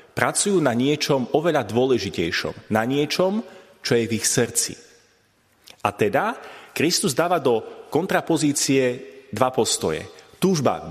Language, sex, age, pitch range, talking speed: Slovak, male, 30-49, 115-160 Hz, 115 wpm